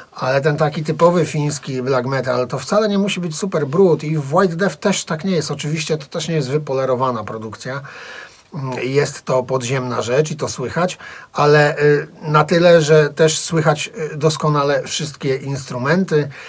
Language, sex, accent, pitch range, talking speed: Polish, male, native, 135-160 Hz, 165 wpm